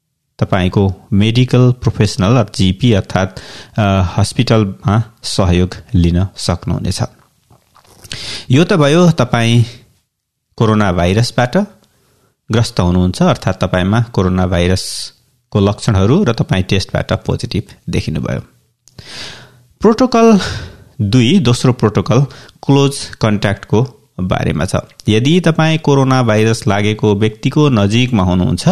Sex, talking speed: male, 85 wpm